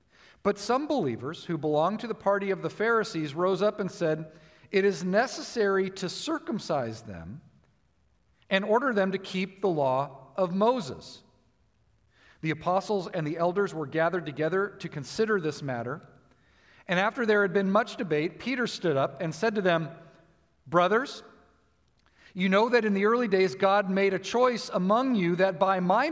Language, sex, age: English, male, 50-69